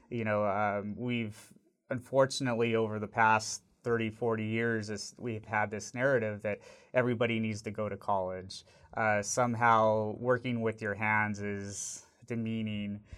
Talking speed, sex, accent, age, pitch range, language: 135 wpm, male, American, 30-49, 105-115 Hz, English